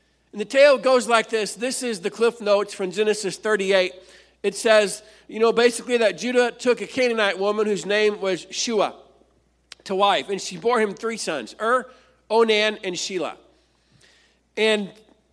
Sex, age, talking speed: male, 50-69, 165 wpm